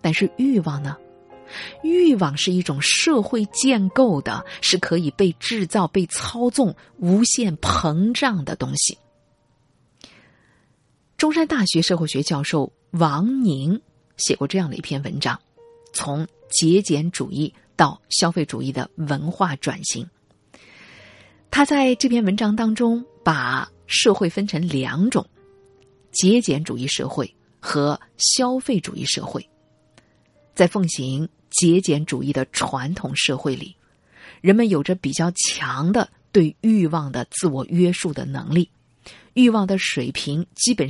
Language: Chinese